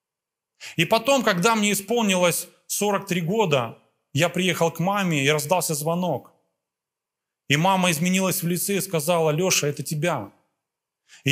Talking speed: 135 wpm